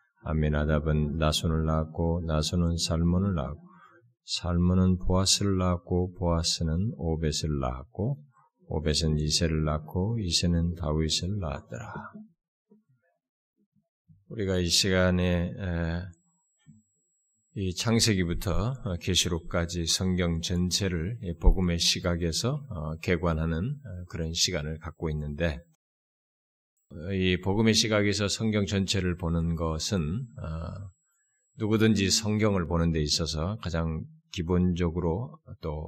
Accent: native